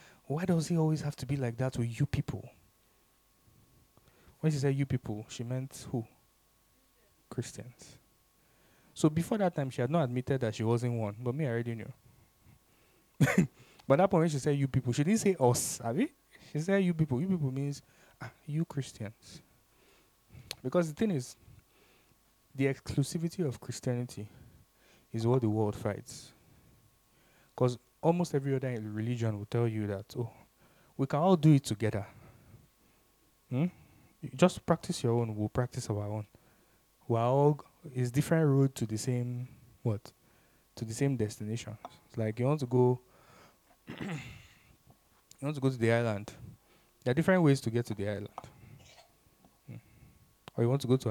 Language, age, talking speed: English, 20-39, 170 wpm